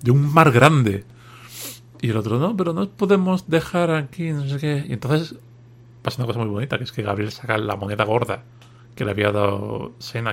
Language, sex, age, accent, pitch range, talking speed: Spanish, male, 40-59, Spanish, 115-165 Hz, 210 wpm